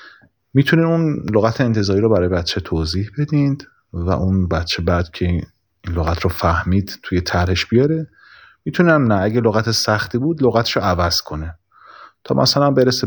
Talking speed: 155 wpm